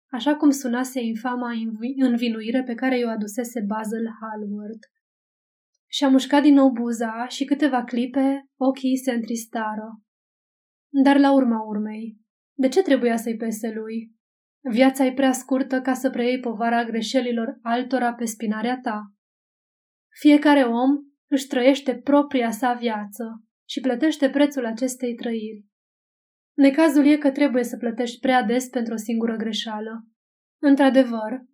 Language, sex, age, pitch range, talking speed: Romanian, female, 20-39, 230-270 Hz, 135 wpm